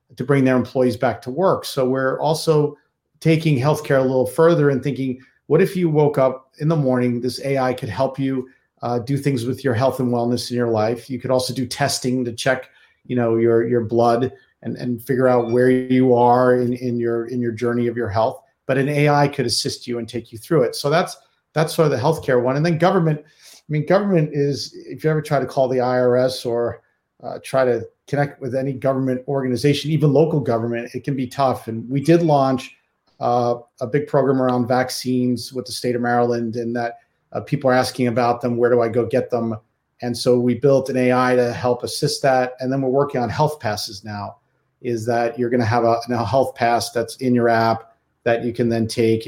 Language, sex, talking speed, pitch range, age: English, male, 225 wpm, 120-135 Hz, 40-59